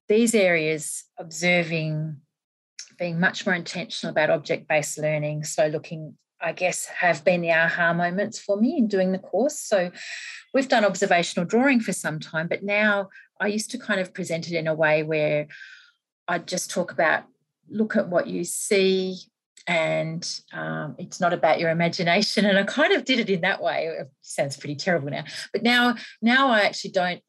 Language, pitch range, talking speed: English, 160-195 Hz, 180 wpm